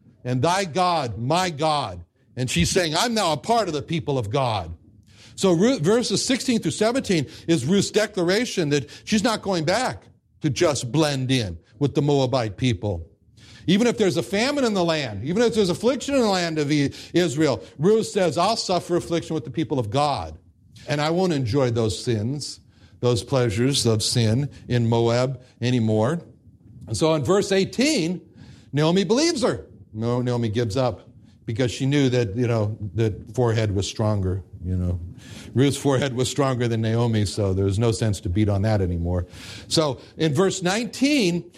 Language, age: English, 60-79